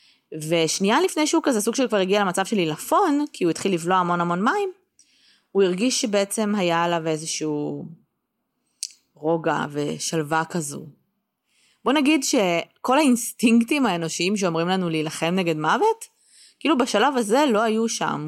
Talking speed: 140 wpm